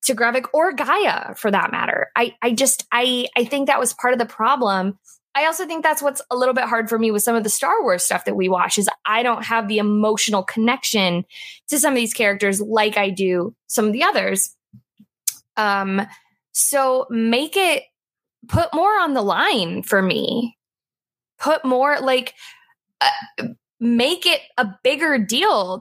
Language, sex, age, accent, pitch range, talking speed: English, female, 20-39, American, 210-275 Hz, 185 wpm